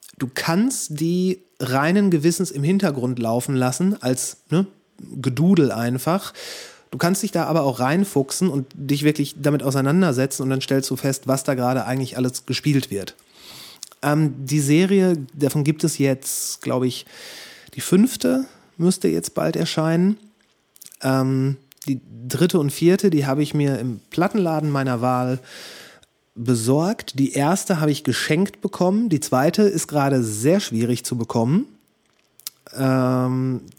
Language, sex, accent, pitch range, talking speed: German, male, German, 130-165 Hz, 140 wpm